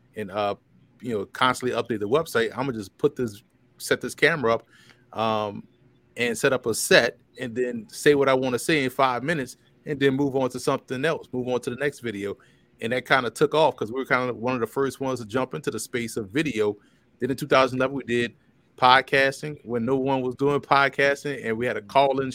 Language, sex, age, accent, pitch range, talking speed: English, male, 30-49, American, 120-140 Hz, 240 wpm